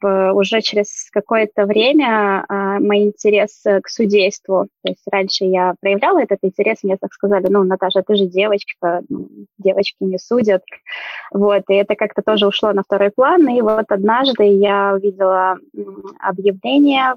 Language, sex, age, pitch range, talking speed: Russian, female, 20-39, 190-215 Hz, 145 wpm